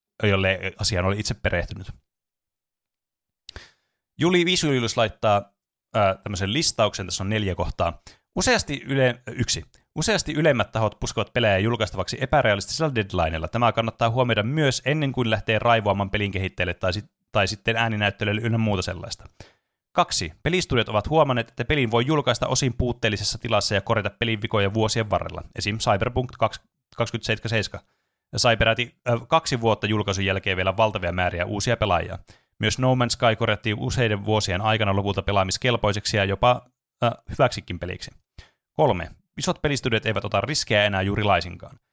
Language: Finnish